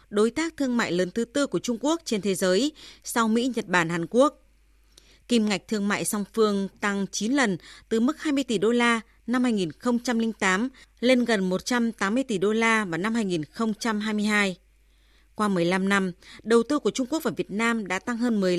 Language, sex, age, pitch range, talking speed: Vietnamese, female, 20-39, 190-245 Hz, 195 wpm